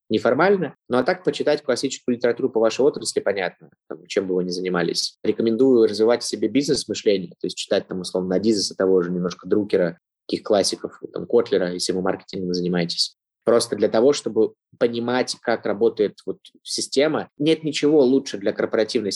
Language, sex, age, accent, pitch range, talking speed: Russian, male, 20-39, native, 100-150 Hz, 170 wpm